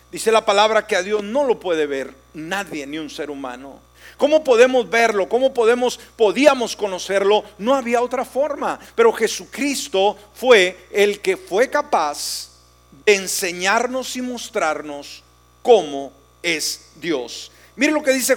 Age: 50-69